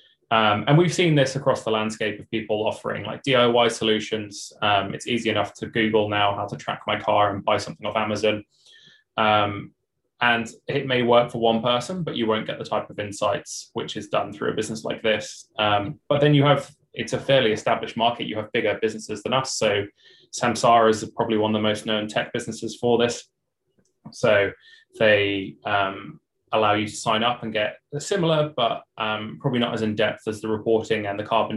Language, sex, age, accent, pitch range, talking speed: English, male, 20-39, British, 105-120 Hz, 205 wpm